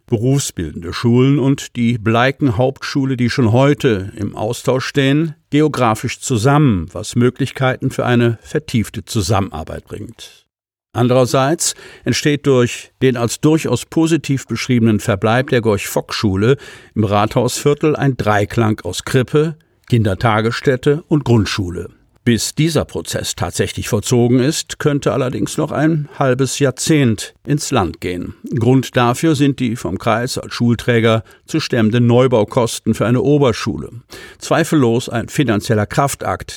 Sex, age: male, 50-69